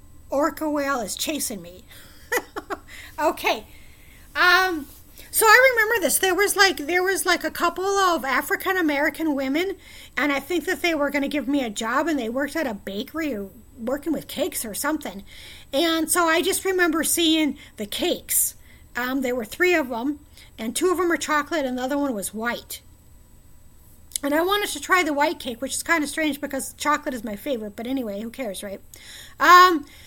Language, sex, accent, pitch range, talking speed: English, female, American, 265-335 Hz, 190 wpm